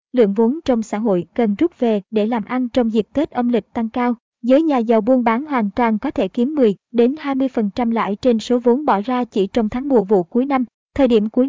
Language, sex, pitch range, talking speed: Vietnamese, male, 220-255 Hz, 240 wpm